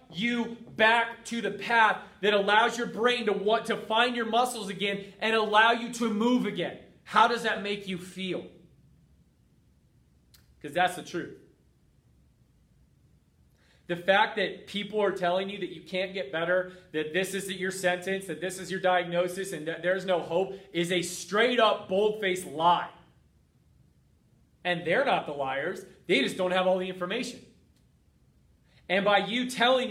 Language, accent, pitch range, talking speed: English, American, 180-210 Hz, 165 wpm